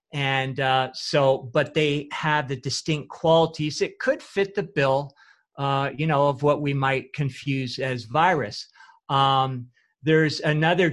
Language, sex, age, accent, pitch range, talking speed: English, male, 50-69, American, 130-150 Hz, 150 wpm